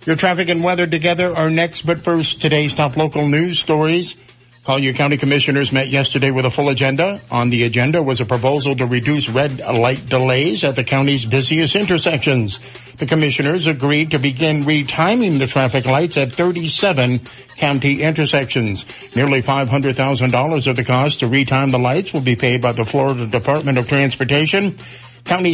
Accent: American